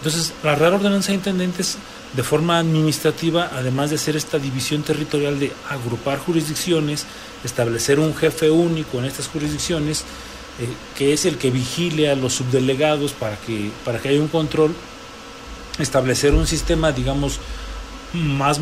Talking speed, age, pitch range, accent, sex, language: 145 wpm, 40-59, 130-160 Hz, Mexican, male, Spanish